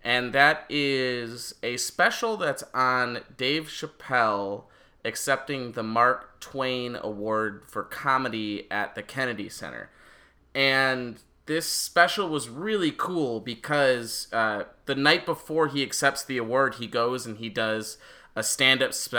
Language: English